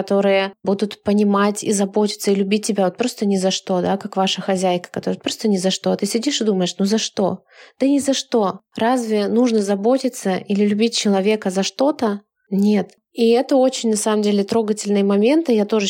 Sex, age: female, 20-39